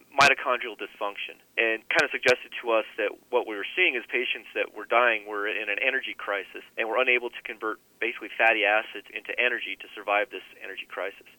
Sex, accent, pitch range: male, American, 110-135 Hz